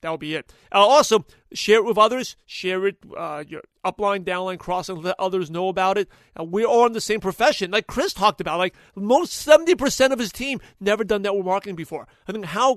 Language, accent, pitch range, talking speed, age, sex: English, American, 175-215 Hz, 215 wpm, 40-59, male